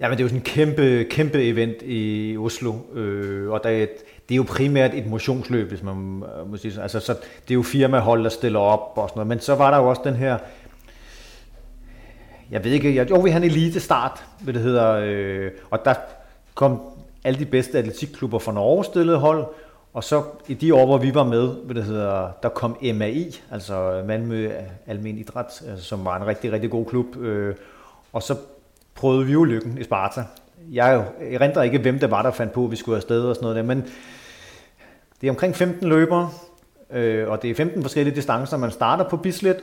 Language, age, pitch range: Danish, 40-59, 110-140 Hz